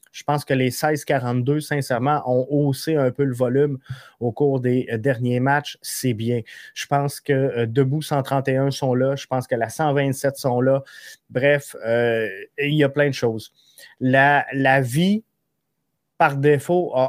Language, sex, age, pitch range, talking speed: French, male, 30-49, 130-145 Hz, 160 wpm